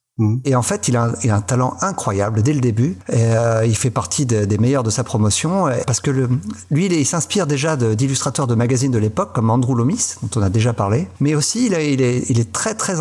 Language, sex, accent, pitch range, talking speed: French, male, French, 115-155 Hz, 230 wpm